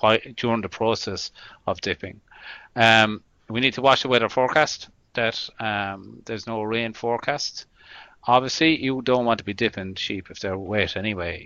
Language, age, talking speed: English, 40-59, 160 wpm